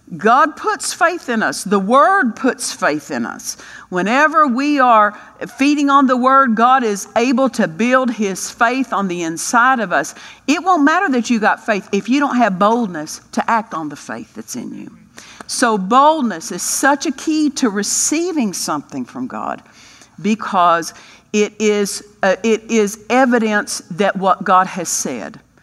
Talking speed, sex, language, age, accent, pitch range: 170 wpm, female, English, 50-69, American, 185-255 Hz